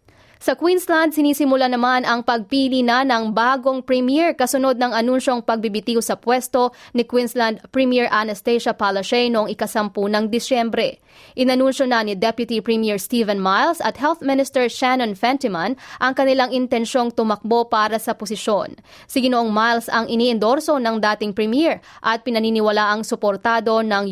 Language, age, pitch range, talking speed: Filipino, 20-39, 215-255 Hz, 140 wpm